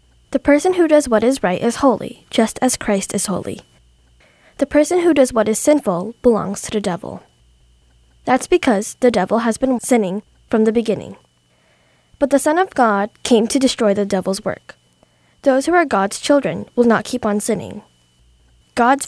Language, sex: Korean, female